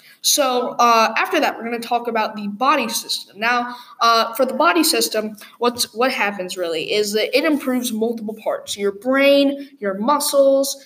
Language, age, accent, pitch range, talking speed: English, 20-39, American, 215-275 Hz, 170 wpm